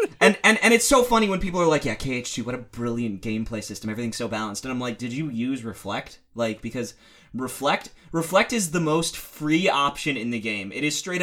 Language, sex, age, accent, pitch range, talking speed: English, male, 30-49, American, 105-145 Hz, 225 wpm